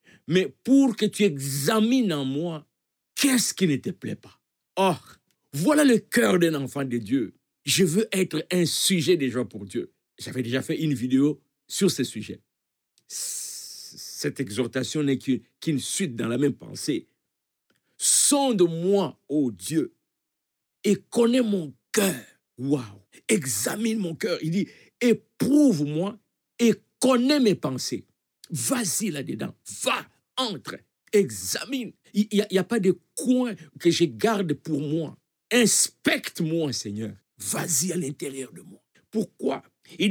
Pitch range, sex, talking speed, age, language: 140-210 Hz, male, 140 wpm, 60-79, French